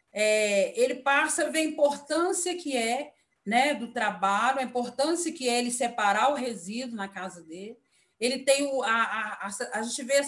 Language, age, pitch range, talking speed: Portuguese, 40-59, 240-300 Hz, 195 wpm